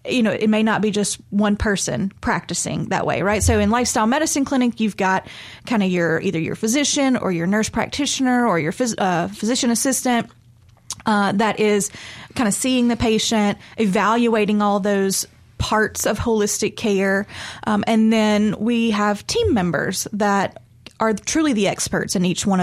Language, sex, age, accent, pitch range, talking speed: English, female, 20-39, American, 185-220 Hz, 170 wpm